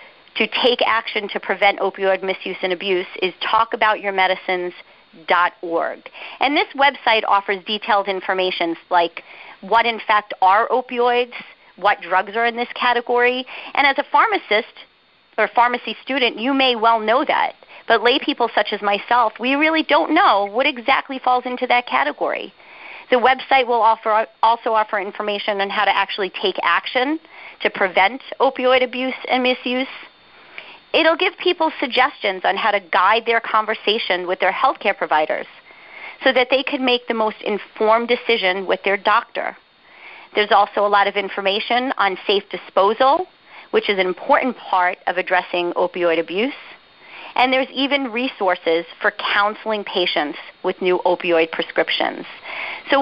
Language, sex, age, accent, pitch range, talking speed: English, female, 40-59, American, 195-255 Hz, 145 wpm